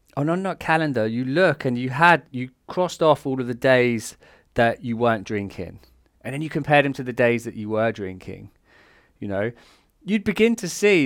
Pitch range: 110-145 Hz